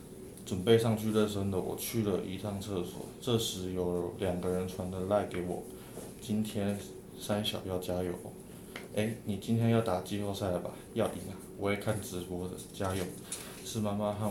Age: 20-39